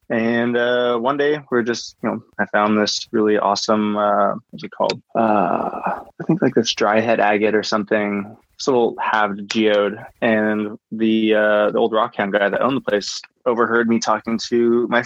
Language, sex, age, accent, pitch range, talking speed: English, male, 20-39, American, 105-125 Hz, 190 wpm